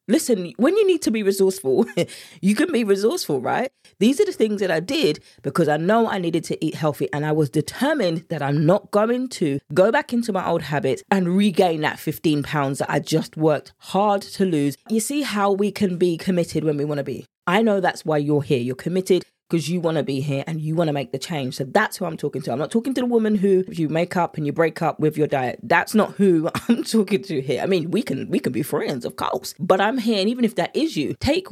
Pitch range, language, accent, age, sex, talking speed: 155-200 Hz, English, British, 20-39, female, 260 wpm